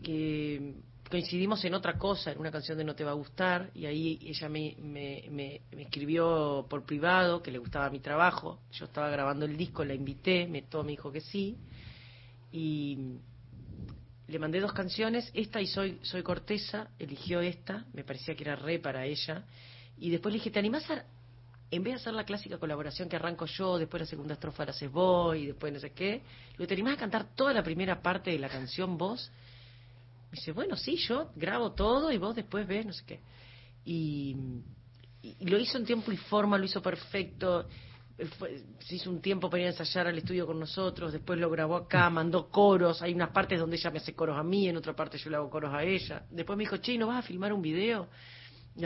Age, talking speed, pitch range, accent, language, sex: 40-59, 215 wpm, 135-180 Hz, Argentinian, Spanish, female